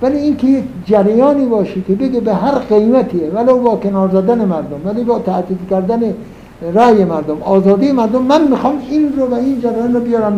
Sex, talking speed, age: male, 185 wpm, 60-79